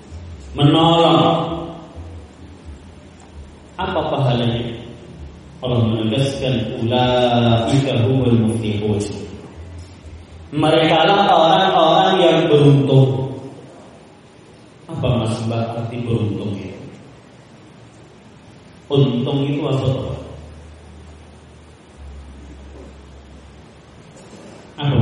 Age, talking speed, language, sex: 40-59, 55 wpm, Indonesian, male